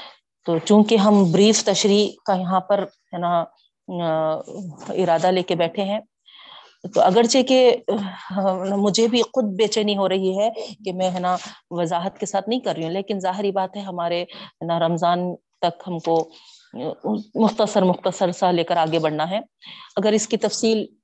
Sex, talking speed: female, 165 wpm